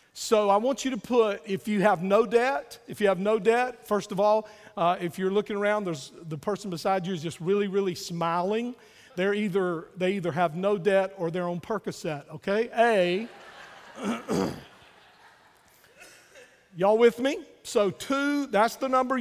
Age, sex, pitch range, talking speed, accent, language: 50-69, male, 180-220 Hz, 170 wpm, American, English